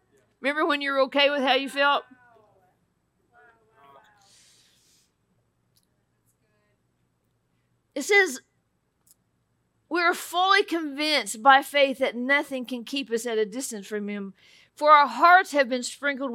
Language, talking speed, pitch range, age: English, 120 wpm, 270-370 Hz, 50-69